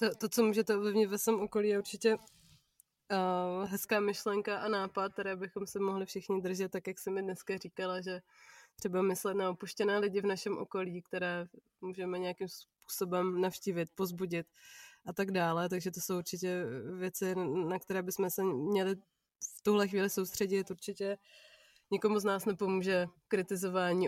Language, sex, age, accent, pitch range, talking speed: Czech, female, 20-39, native, 185-205 Hz, 160 wpm